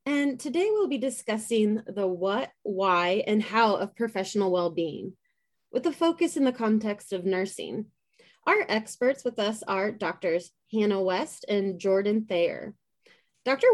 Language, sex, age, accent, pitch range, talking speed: English, female, 20-39, American, 190-235 Hz, 145 wpm